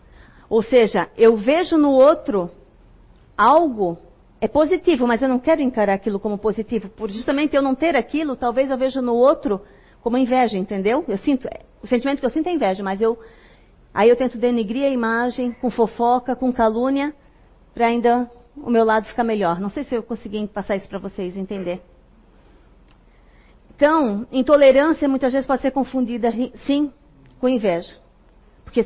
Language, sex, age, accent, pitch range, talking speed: Portuguese, female, 40-59, Brazilian, 220-270 Hz, 160 wpm